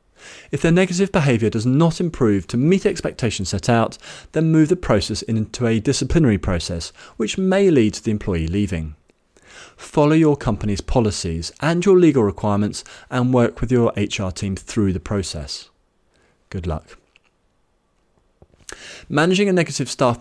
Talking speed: 150 wpm